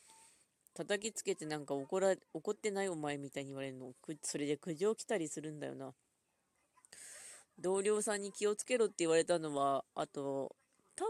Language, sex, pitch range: Japanese, female, 160-225 Hz